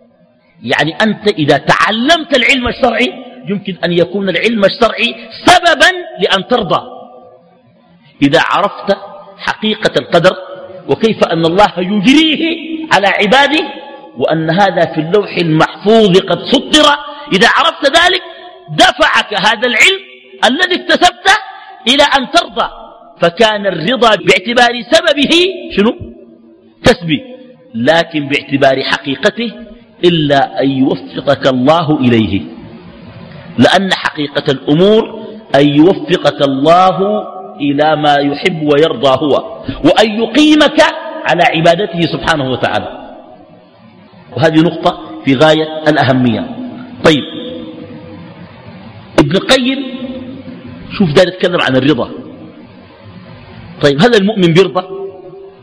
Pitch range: 160-255 Hz